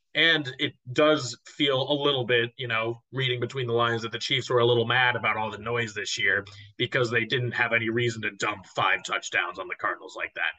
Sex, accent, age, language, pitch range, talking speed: male, American, 30-49, English, 115-150 Hz, 230 wpm